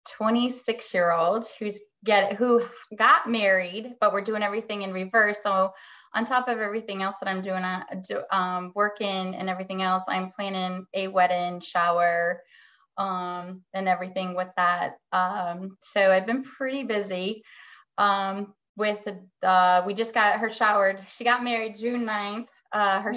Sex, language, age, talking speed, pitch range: female, English, 20-39, 160 wpm, 185-215 Hz